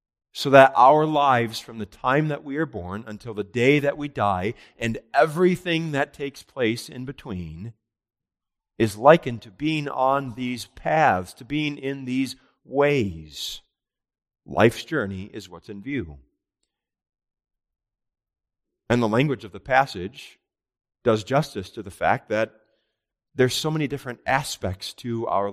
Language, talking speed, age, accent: English, 145 wpm, 40-59, American